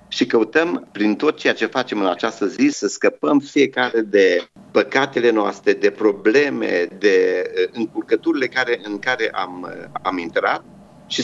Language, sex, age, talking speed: Romanian, male, 50-69, 140 wpm